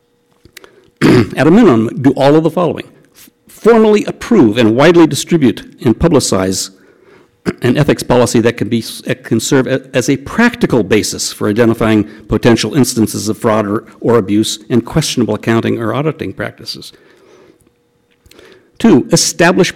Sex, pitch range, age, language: male, 110-160 Hz, 60-79, English